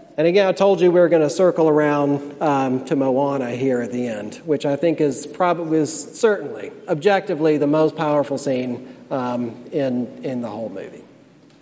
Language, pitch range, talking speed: English, 140-170 Hz, 185 wpm